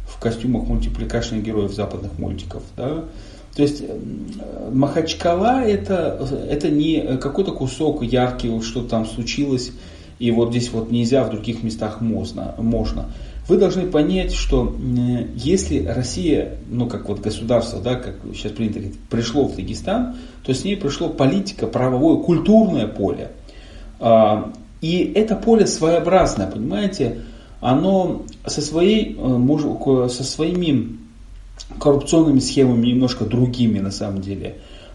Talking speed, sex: 125 wpm, male